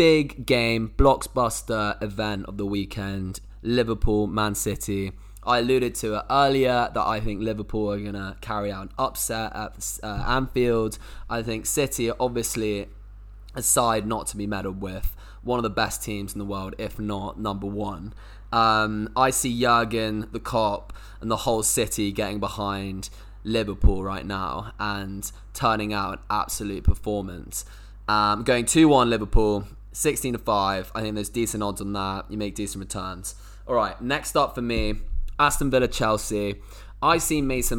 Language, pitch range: English, 100-120 Hz